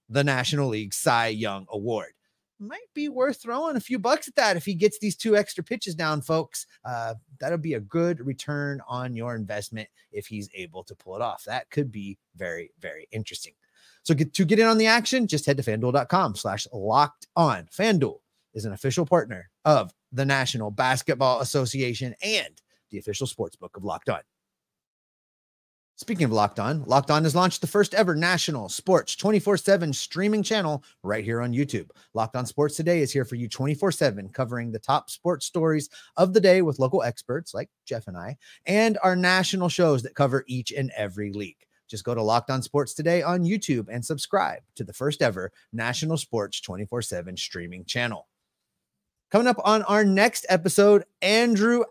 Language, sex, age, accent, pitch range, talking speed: English, male, 30-49, American, 120-185 Hz, 185 wpm